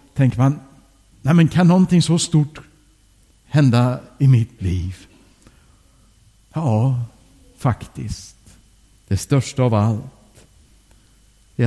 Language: English